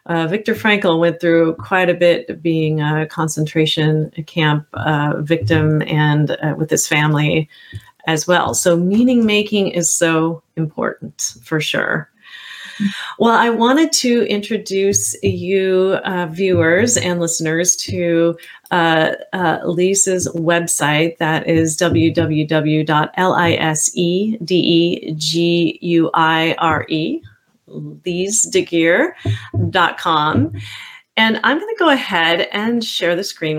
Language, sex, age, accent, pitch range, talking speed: English, female, 30-49, American, 160-200 Hz, 105 wpm